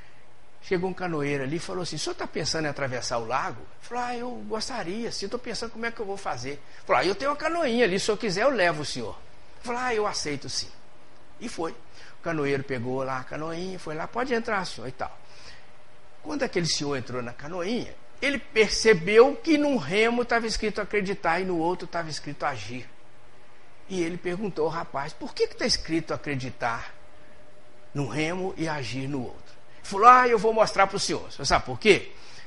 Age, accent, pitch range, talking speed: 60-79, Brazilian, 130-205 Hz, 215 wpm